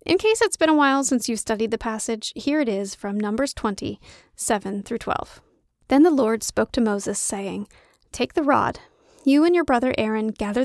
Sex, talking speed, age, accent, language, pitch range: female, 190 wpm, 30-49, American, English, 220-275 Hz